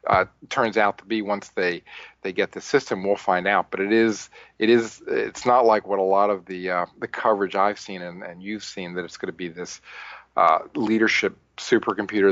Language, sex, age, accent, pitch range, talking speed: English, male, 40-59, American, 95-110 Hz, 220 wpm